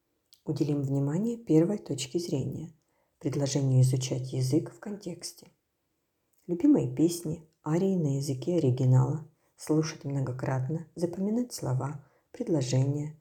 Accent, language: native, Ukrainian